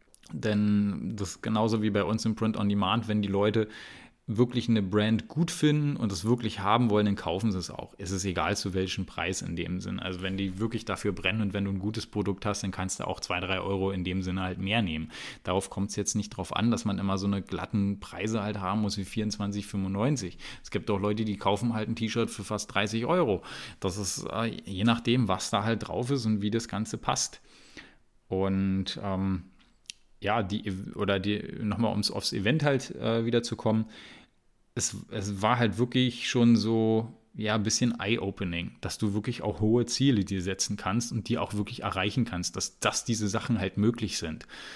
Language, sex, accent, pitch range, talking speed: German, male, German, 100-115 Hz, 210 wpm